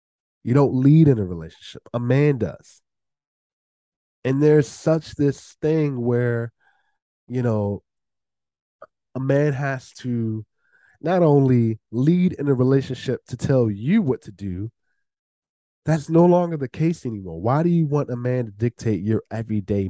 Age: 20-39